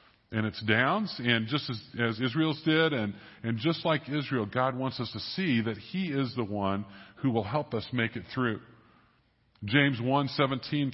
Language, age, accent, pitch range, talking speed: English, 50-69, American, 115-150 Hz, 180 wpm